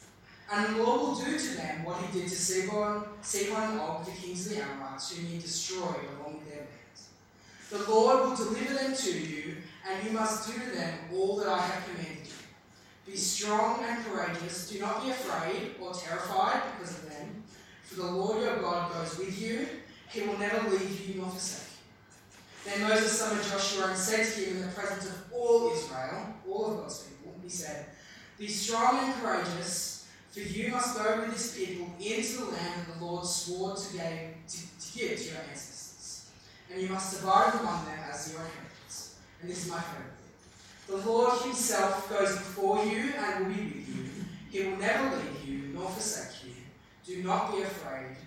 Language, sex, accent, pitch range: English, female, Australian, 165-215 Hz